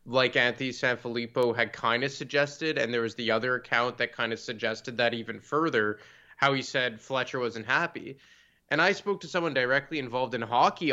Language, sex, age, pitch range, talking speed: English, male, 20-39, 125-155 Hz, 190 wpm